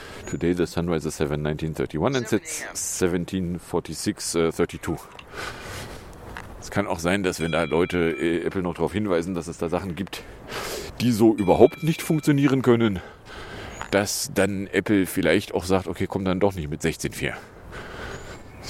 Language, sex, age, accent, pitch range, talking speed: German, male, 40-59, German, 90-105 Hz, 145 wpm